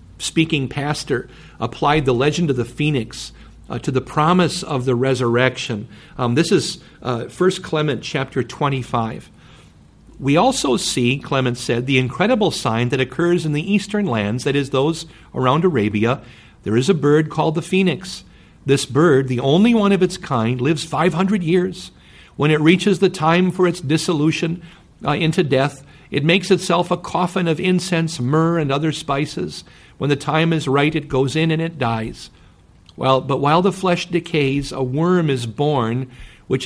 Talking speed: 170 wpm